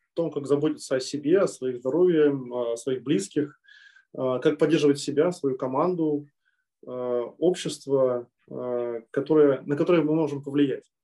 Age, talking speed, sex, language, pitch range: 20-39, 130 wpm, male, Russian, 130-155 Hz